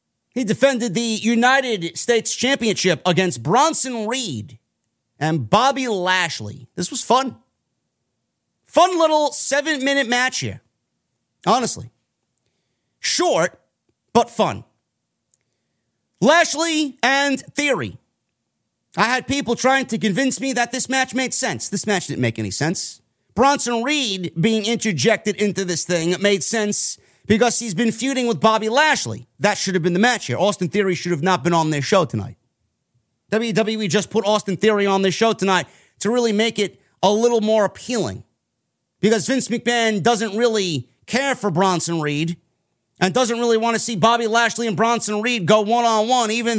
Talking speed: 150 wpm